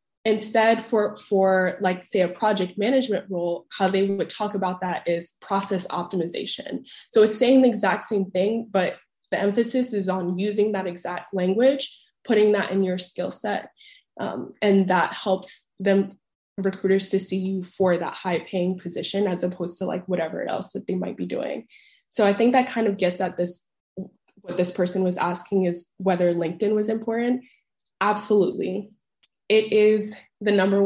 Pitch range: 185-215 Hz